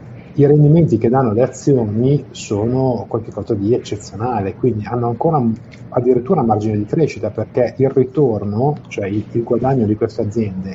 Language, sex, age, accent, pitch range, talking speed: Italian, male, 30-49, native, 110-130 Hz, 155 wpm